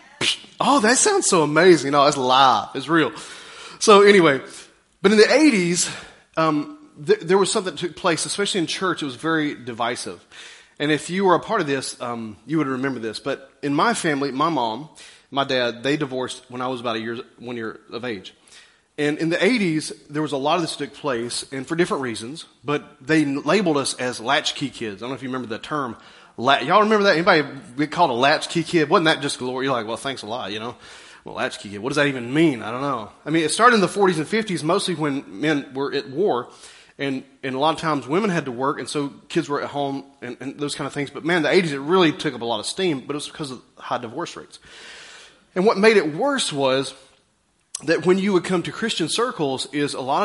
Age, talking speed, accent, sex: 30-49, 240 wpm, American, male